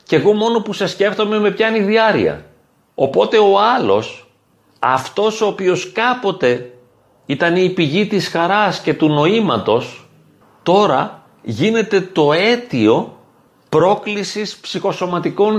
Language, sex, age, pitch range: Greek, male, 40-59, 145-205 Hz